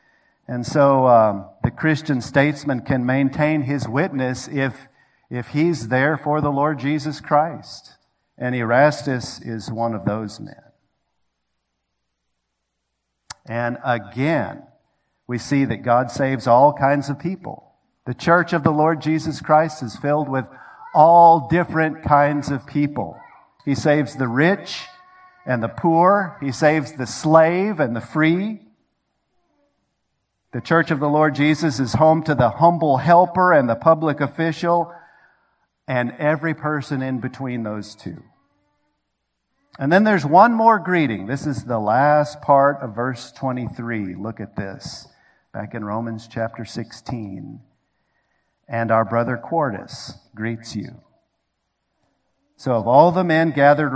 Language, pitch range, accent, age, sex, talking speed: English, 120-155 Hz, American, 50-69, male, 135 wpm